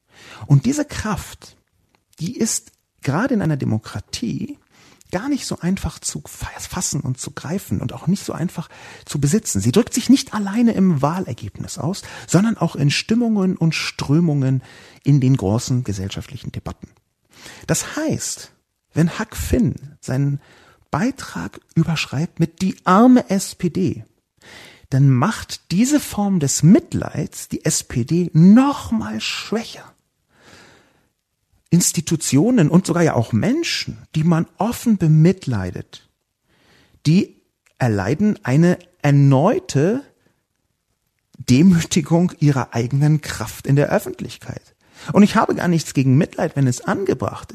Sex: male